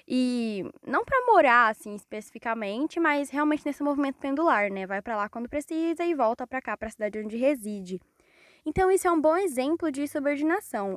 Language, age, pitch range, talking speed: Portuguese, 10-29, 210-285 Hz, 185 wpm